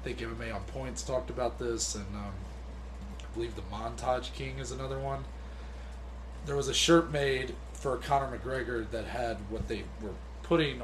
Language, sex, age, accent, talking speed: English, male, 30-49, American, 175 wpm